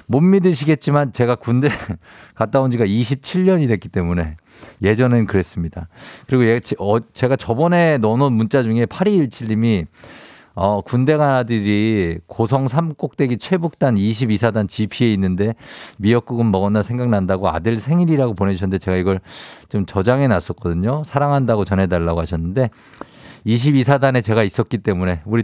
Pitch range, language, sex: 100-140 Hz, Korean, male